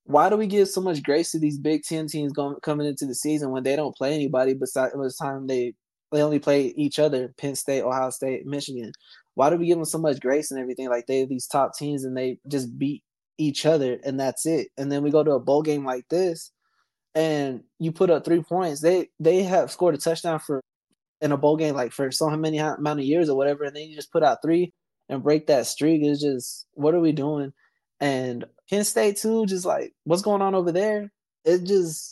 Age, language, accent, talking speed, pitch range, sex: 20-39, English, American, 240 wpm, 140-170 Hz, male